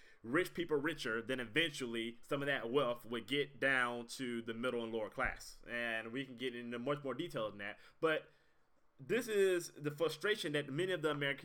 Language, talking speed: English, 200 wpm